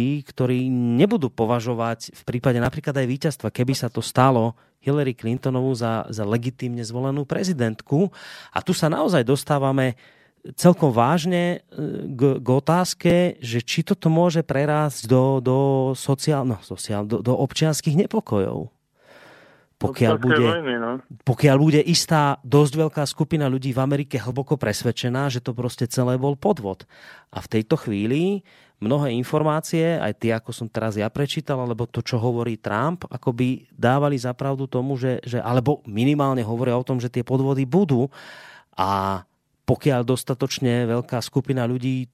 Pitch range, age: 120-145 Hz, 30-49